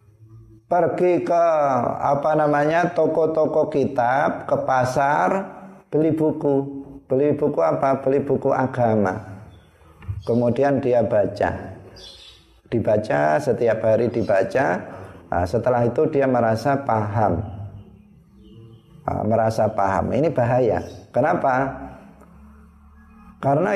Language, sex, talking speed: Indonesian, male, 85 wpm